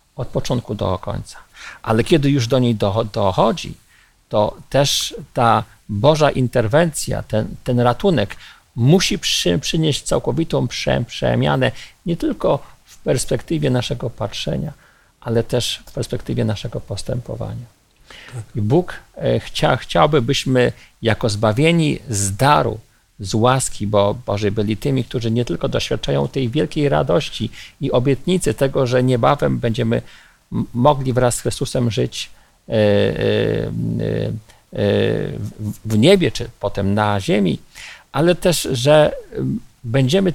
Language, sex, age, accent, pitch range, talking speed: Polish, male, 50-69, native, 110-145 Hz, 110 wpm